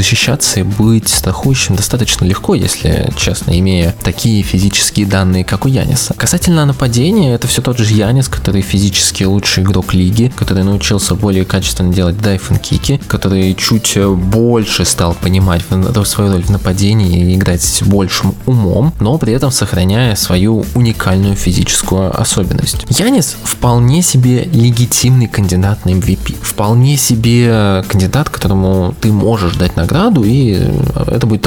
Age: 20-39